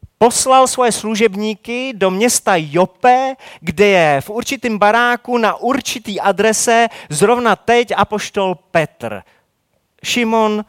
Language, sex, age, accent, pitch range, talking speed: Czech, male, 30-49, native, 145-215 Hz, 105 wpm